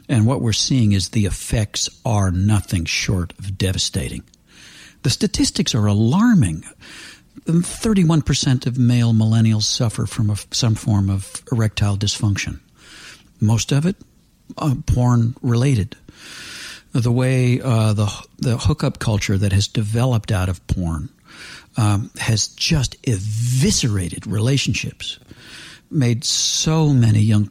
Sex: male